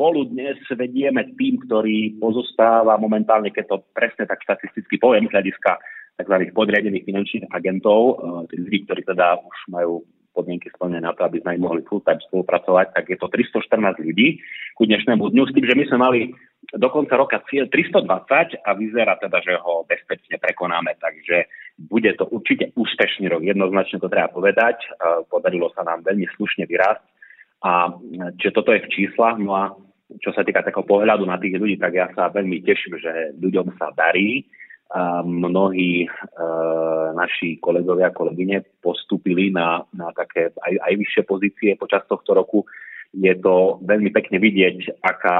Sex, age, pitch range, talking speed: male, 30-49, 90-105 Hz, 160 wpm